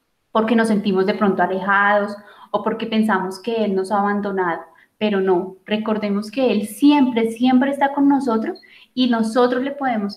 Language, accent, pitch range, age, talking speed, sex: Spanish, Colombian, 205-255 Hz, 20-39, 165 wpm, female